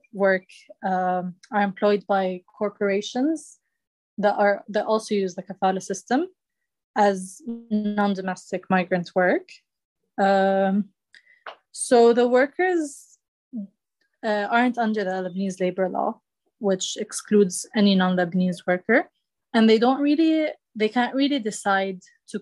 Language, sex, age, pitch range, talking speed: English, female, 20-39, 185-225 Hz, 115 wpm